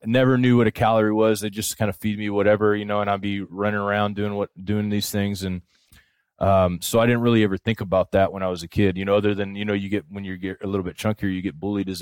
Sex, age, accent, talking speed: male, 20-39, American, 295 wpm